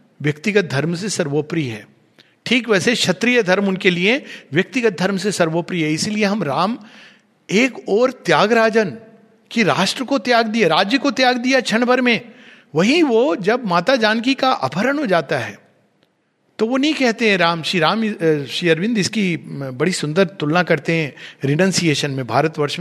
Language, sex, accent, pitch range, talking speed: Hindi, male, native, 160-225 Hz, 165 wpm